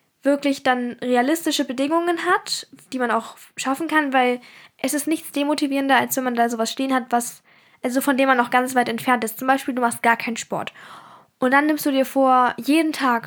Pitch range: 235-275 Hz